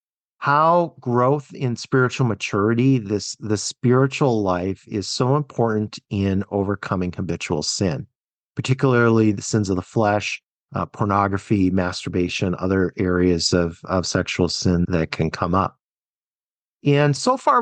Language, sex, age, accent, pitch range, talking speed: English, male, 40-59, American, 100-135 Hz, 130 wpm